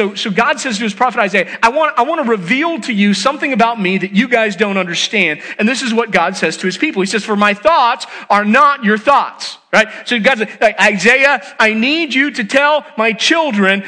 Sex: male